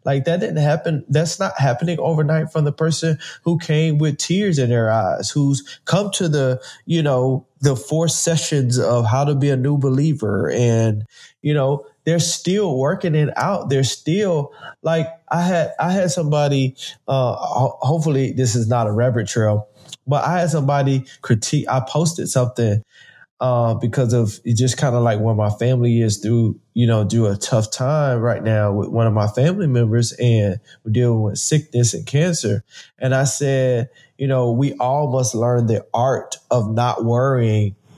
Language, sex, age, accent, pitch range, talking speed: English, male, 20-39, American, 115-150 Hz, 180 wpm